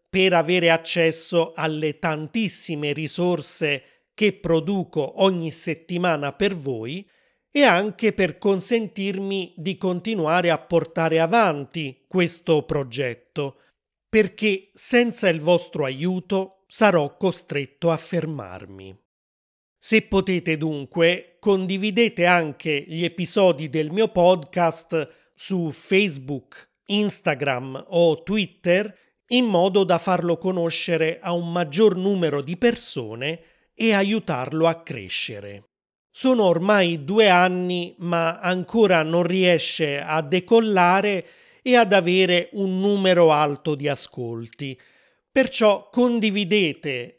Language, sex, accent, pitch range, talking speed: Italian, male, native, 160-195 Hz, 105 wpm